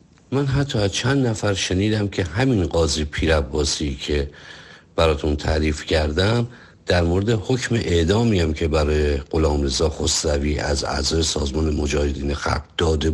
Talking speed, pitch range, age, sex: 130 wpm, 80-100 Hz, 50-69, male